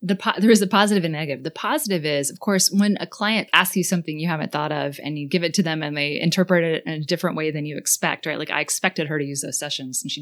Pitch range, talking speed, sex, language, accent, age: 150-190 Hz, 290 wpm, female, English, American, 20-39